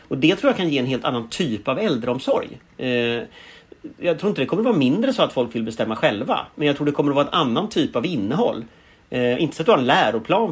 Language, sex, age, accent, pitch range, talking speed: Swedish, male, 30-49, native, 120-180 Hz, 270 wpm